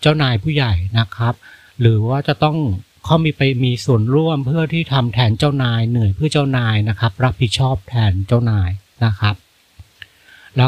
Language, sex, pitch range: Thai, male, 105-135 Hz